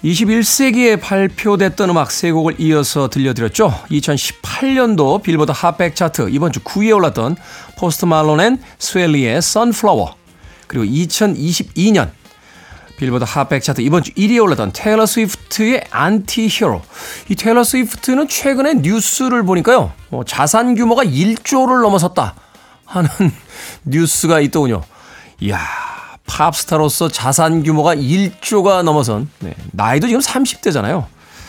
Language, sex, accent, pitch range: Korean, male, native, 150-225 Hz